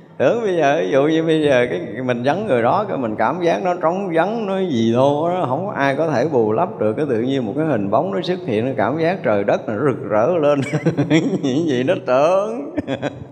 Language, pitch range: Vietnamese, 110-165 Hz